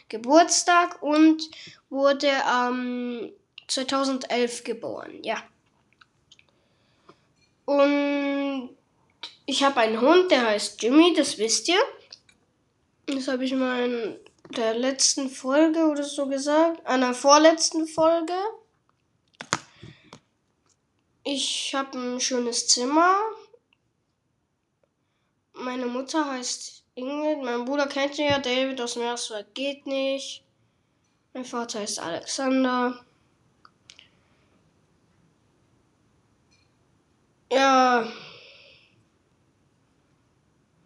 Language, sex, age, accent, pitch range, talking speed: German, female, 10-29, German, 250-295 Hz, 85 wpm